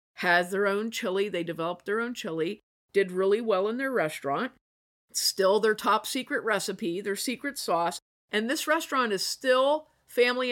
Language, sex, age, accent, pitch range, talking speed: English, female, 50-69, American, 165-225 Hz, 165 wpm